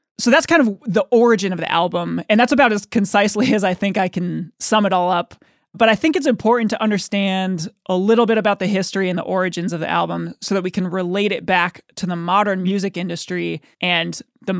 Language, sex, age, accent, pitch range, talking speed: English, male, 20-39, American, 185-225 Hz, 230 wpm